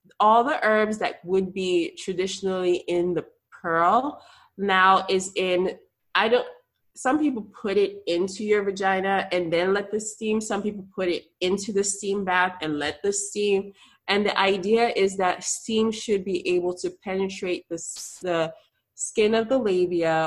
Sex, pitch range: female, 170-205 Hz